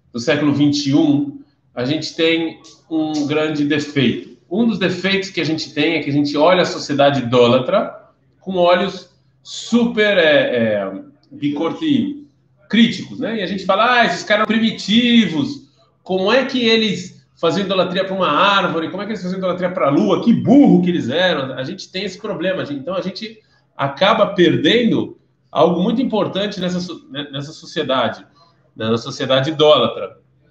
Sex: male